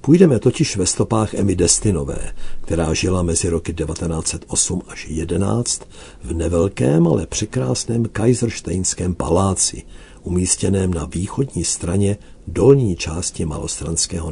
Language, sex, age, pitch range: Czech, male, 60-79, 80-105 Hz